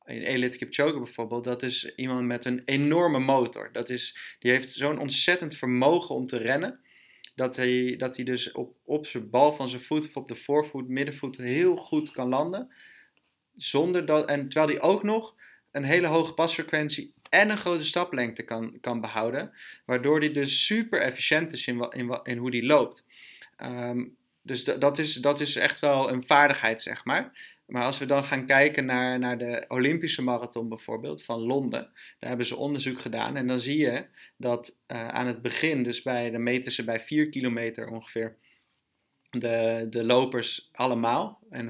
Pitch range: 120-145 Hz